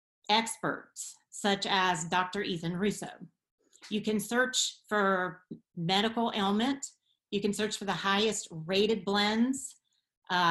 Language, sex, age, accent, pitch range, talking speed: English, female, 40-59, American, 185-225 Hz, 120 wpm